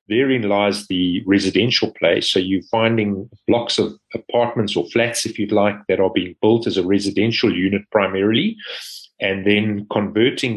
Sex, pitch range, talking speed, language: male, 95-115 Hz, 160 wpm, English